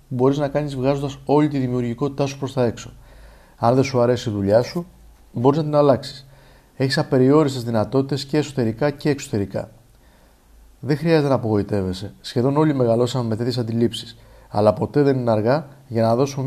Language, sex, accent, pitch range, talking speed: Greek, male, native, 110-140 Hz, 170 wpm